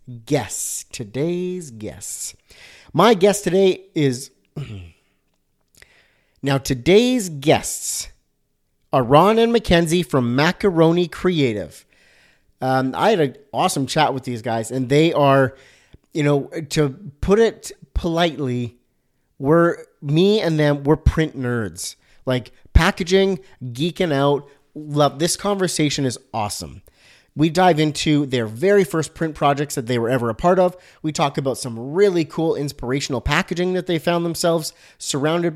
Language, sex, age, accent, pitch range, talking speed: English, male, 30-49, American, 130-170 Hz, 135 wpm